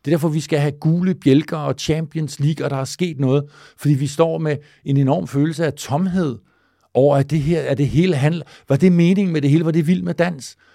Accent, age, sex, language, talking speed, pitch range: native, 50-69, male, Danish, 250 wpm, 125-165 Hz